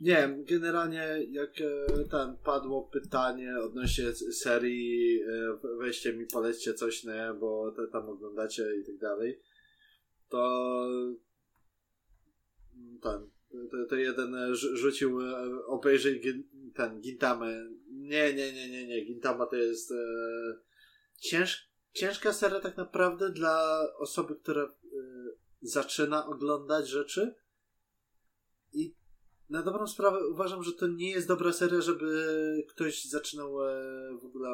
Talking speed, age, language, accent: 115 wpm, 20-39, Polish, native